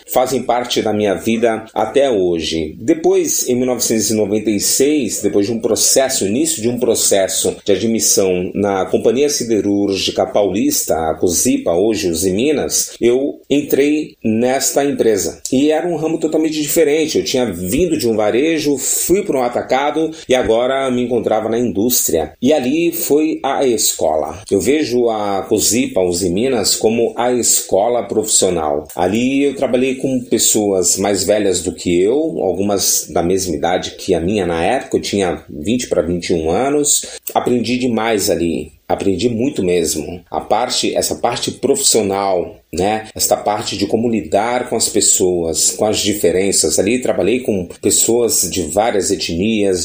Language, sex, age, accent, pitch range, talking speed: Portuguese, male, 40-59, Brazilian, 100-135 Hz, 150 wpm